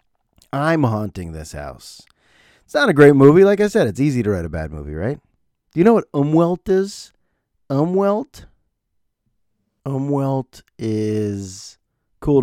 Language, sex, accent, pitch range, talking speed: English, male, American, 95-135 Hz, 145 wpm